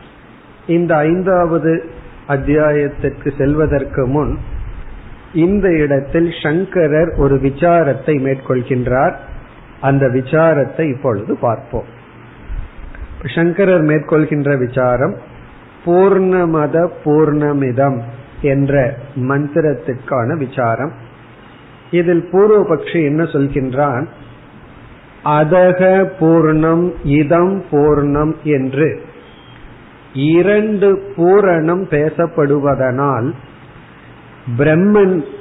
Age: 40-59